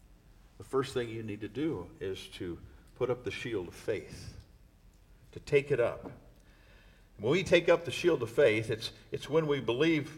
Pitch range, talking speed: 115-165 Hz, 185 wpm